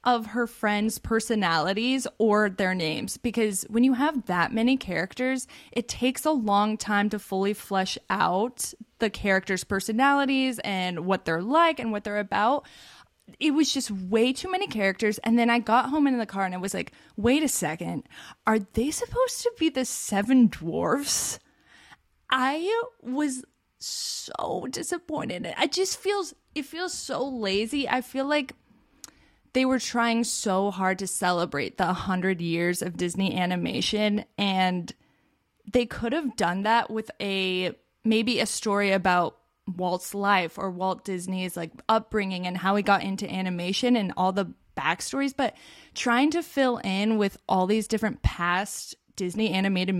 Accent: American